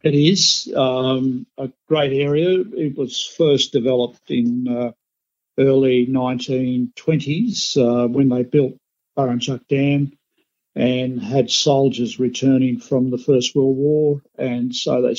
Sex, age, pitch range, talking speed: male, 50-69, 130-145 Hz, 125 wpm